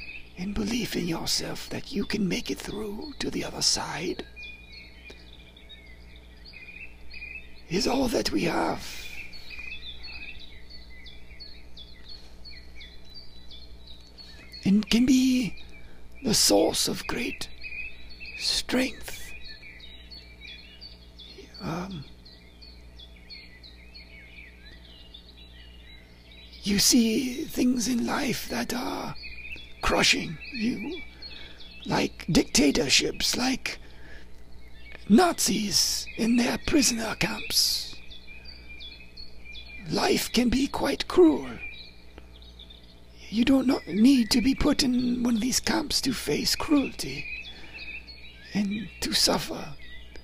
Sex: male